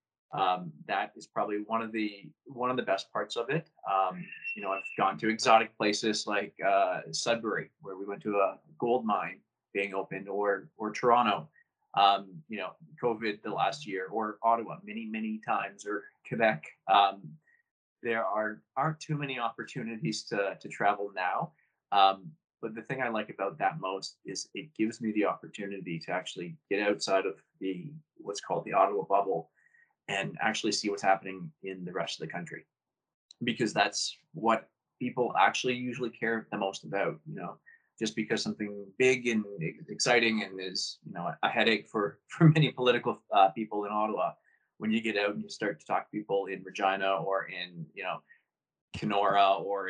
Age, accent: 20-39, American